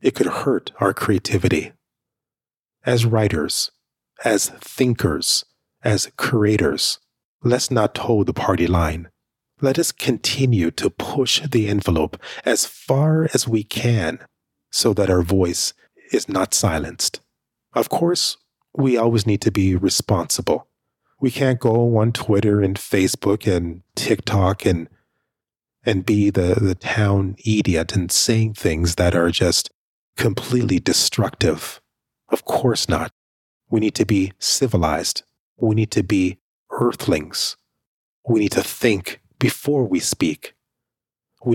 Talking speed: 130 wpm